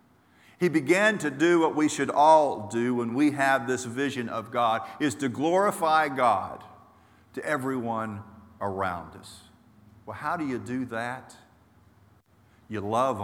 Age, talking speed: 50-69, 145 wpm